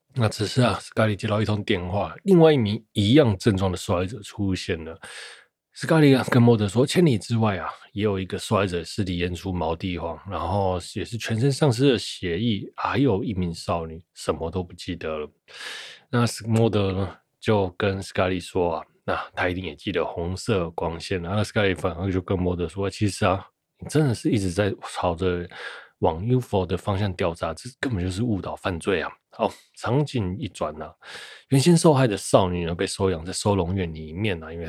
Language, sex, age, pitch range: Chinese, male, 20-39, 90-115 Hz